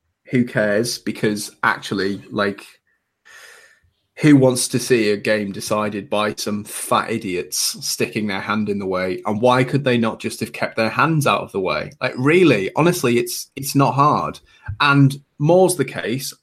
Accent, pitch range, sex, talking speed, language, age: British, 105-140 Hz, male, 170 wpm, English, 20-39